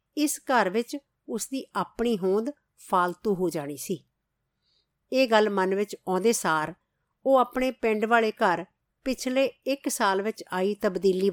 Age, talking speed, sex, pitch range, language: 50-69, 145 wpm, female, 180-235 Hz, Punjabi